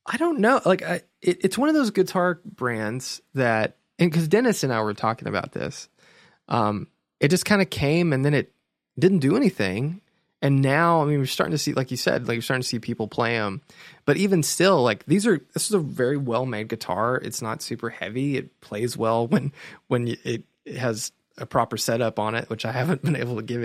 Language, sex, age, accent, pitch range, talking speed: English, male, 20-39, American, 115-165 Hz, 230 wpm